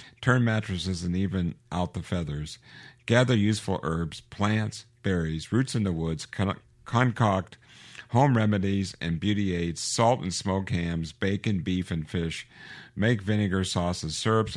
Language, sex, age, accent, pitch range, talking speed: English, male, 50-69, American, 85-110 Hz, 140 wpm